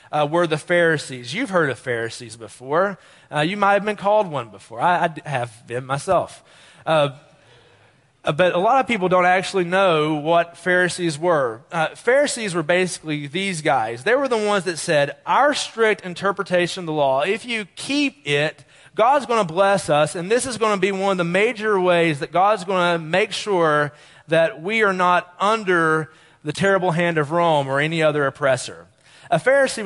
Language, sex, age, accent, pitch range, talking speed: English, male, 30-49, American, 155-200 Hz, 190 wpm